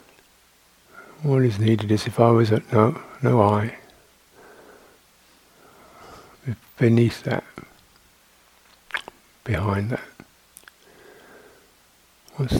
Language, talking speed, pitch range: English, 75 wpm, 110-130 Hz